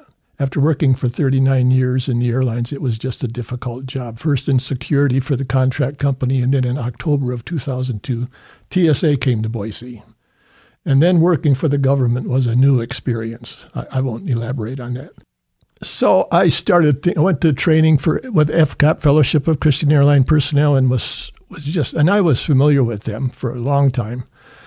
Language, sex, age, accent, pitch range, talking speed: English, male, 60-79, American, 125-150 Hz, 190 wpm